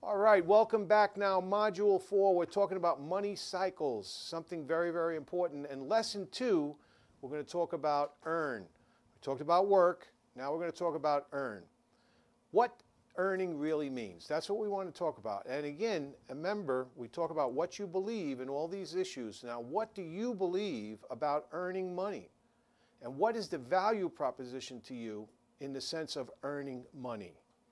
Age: 50-69